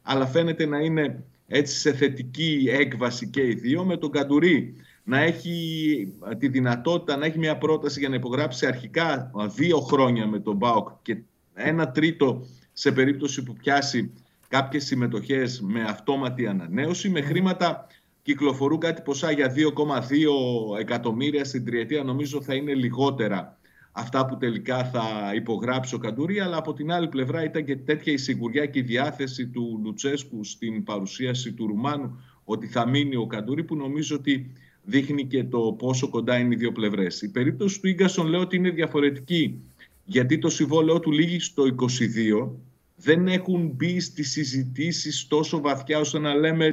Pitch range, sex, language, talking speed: 125-155 Hz, male, Greek, 160 wpm